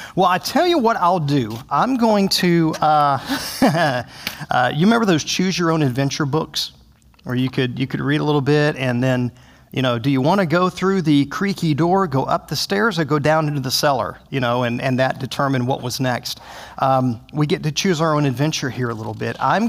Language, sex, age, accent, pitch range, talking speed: English, male, 40-59, American, 130-165 Hz, 225 wpm